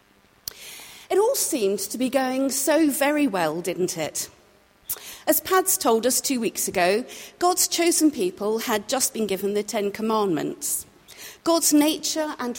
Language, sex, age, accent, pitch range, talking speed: English, female, 50-69, British, 225-290 Hz, 140 wpm